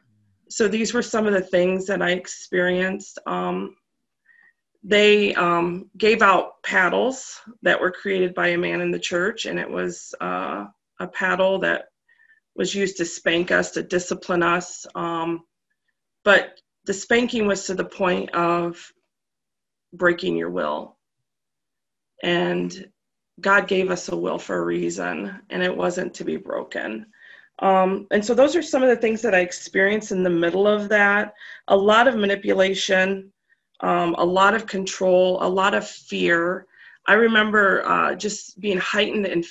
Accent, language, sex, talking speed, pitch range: American, English, female, 160 wpm, 175-210 Hz